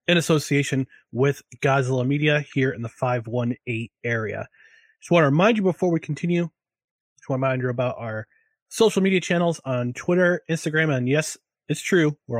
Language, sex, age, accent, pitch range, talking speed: English, male, 30-49, American, 135-180 Hz, 175 wpm